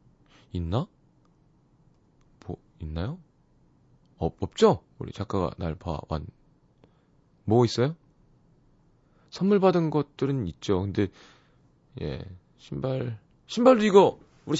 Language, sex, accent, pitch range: Korean, male, native, 100-150 Hz